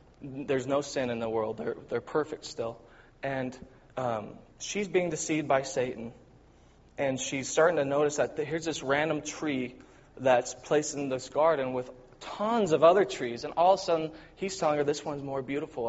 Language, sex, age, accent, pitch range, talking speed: English, male, 20-39, American, 135-165 Hz, 185 wpm